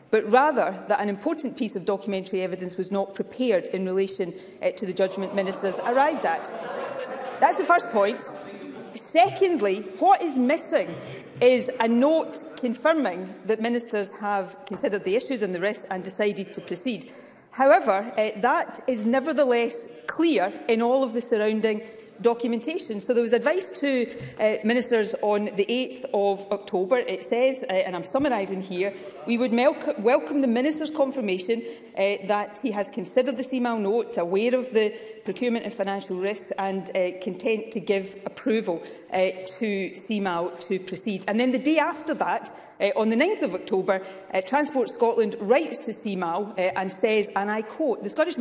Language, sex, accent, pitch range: English, female, British, 195-250 Hz